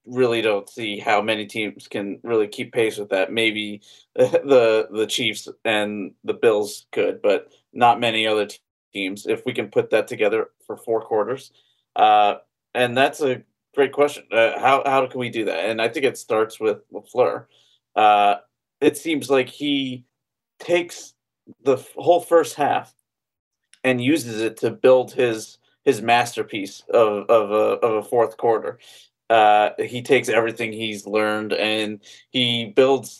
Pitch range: 110-140 Hz